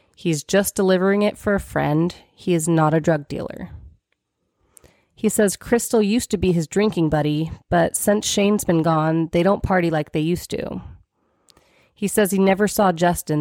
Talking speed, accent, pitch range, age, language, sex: 180 wpm, American, 165-210 Hz, 30-49, English, female